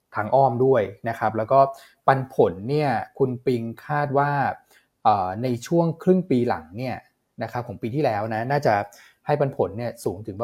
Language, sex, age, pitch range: Thai, male, 20-39, 115-140 Hz